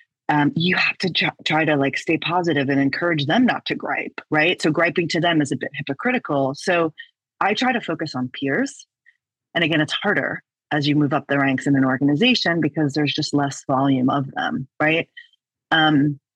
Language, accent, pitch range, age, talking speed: English, American, 140-185 Hz, 30-49, 195 wpm